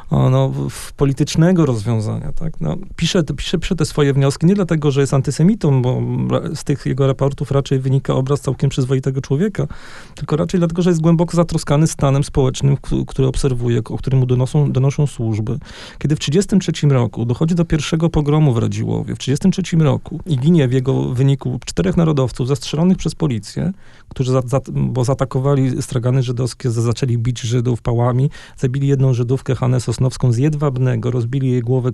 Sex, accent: male, native